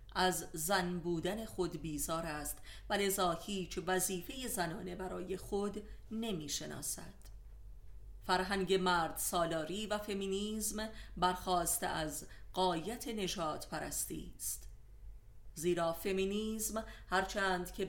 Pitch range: 165-195 Hz